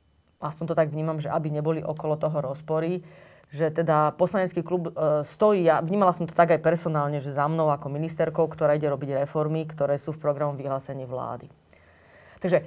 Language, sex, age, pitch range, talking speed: Slovak, female, 30-49, 145-170 Hz, 190 wpm